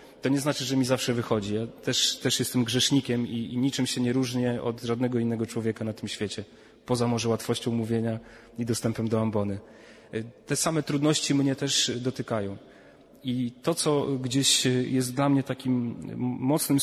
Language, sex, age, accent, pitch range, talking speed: Polish, male, 30-49, native, 120-140 Hz, 170 wpm